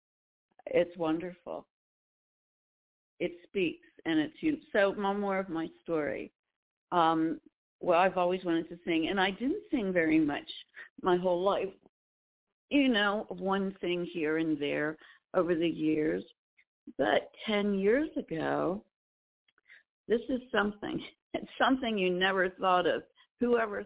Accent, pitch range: American, 165-230 Hz